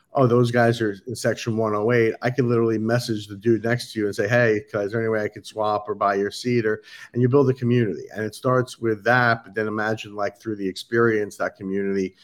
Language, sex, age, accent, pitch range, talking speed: English, male, 50-69, American, 105-125 Hz, 240 wpm